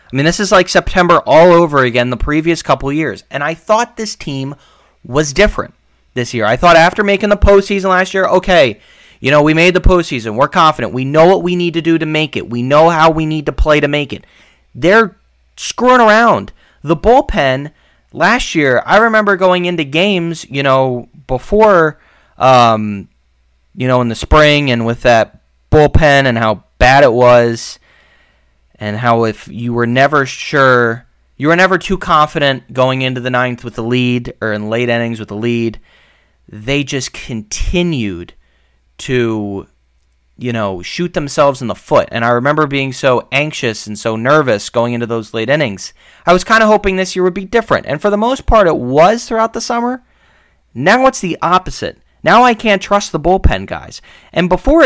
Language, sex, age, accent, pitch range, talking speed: English, male, 30-49, American, 120-180 Hz, 190 wpm